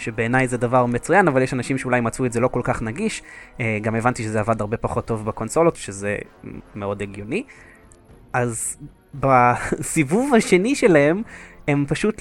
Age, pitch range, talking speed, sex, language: 20-39, 115-145 Hz, 155 wpm, male, Hebrew